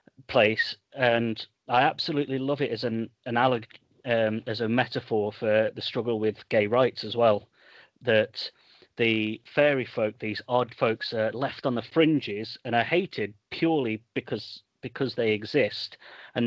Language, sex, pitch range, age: English, male, 110-125 Hz, 30-49